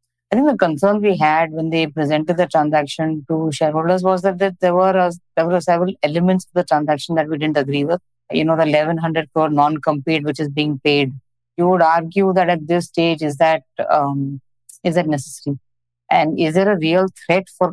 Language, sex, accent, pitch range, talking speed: English, female, Indian, 150-180 Hz, 205 wpm